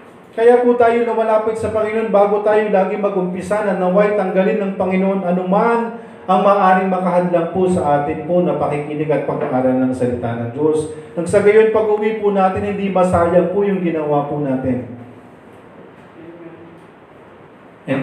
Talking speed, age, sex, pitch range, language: 145 wpm, 40-59, male, 135-185 Hz, Filipino